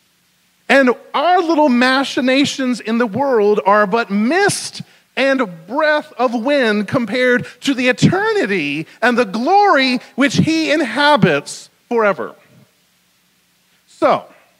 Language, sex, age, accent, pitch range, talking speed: English, male, 40-59, American, 180-240 Hz, 105 wpm